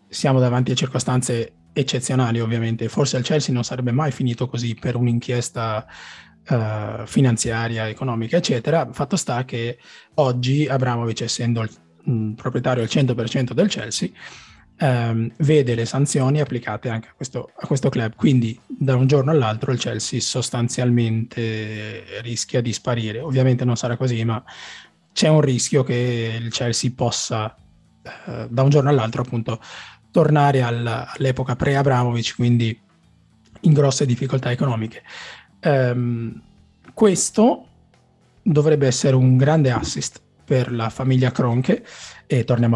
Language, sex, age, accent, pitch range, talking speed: Italian, male, 20-39, native, 115-135 Hz, 135 wpm